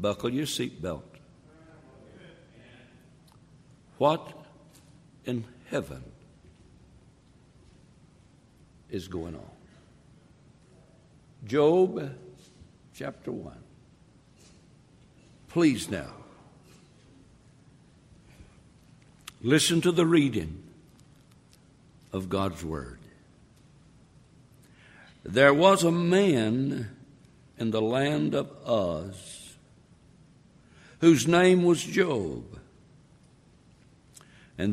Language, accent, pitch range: English, American, 115-165 Hz